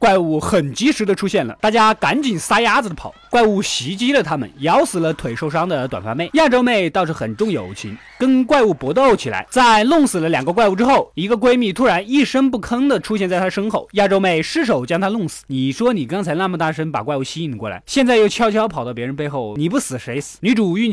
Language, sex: Chinese, male